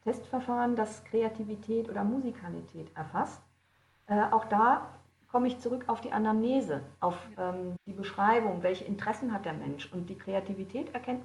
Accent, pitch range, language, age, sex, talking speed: German, 180-235 Hz, German, 40-59, female, 150 wpm